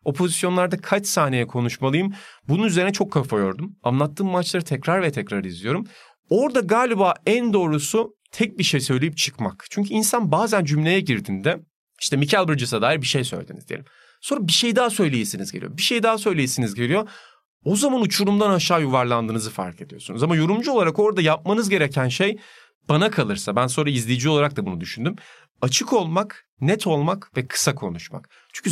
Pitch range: 135-195 Hz